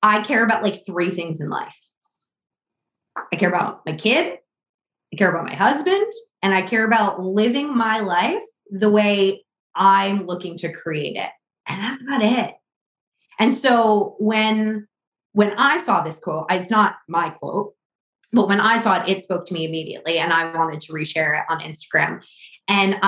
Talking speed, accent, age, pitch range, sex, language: 175 wpm, American, 20-39, 175-220 Hz, female, English